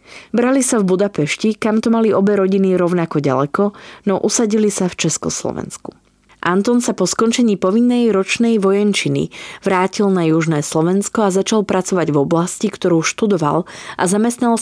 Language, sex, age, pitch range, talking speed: Slovak, female, 30-49, 155-205 Hz, 150 wpm